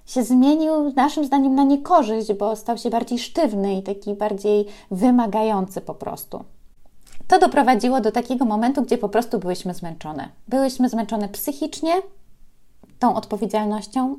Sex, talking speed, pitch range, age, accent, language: female, 135 wpm, 200-245 Hz, 20-39, native, Polish